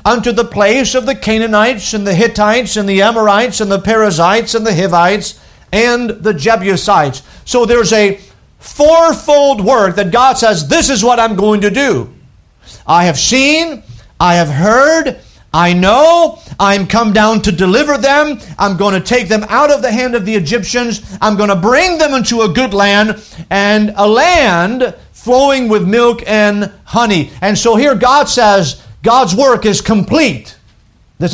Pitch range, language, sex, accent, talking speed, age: 170-235 Hz, English, male, American, 170 wpm, 50-69